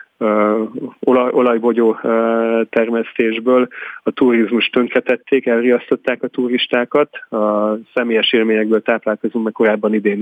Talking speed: 105 wpm